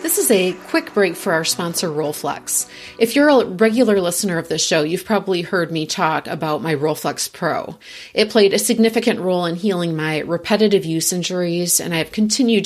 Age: 30-49